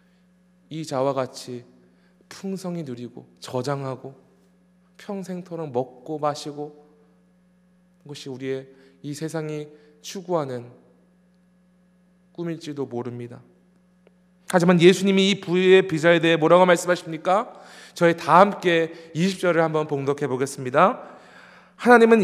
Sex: male